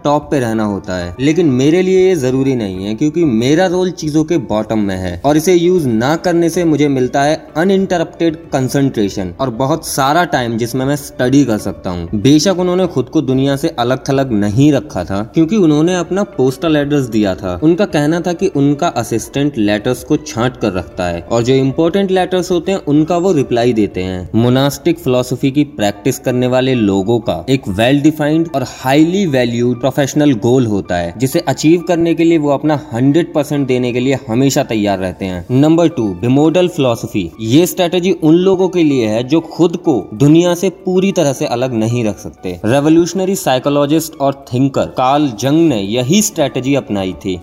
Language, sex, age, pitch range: Hindi, male, 20-39, 115-160 Hz